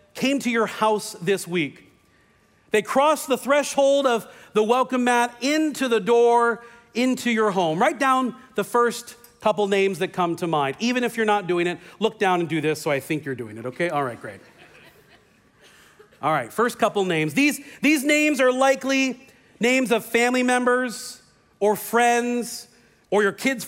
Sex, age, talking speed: male, 40-59, 175 wpm